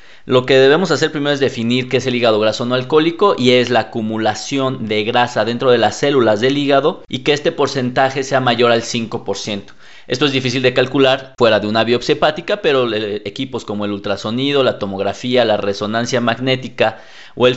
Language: Spanish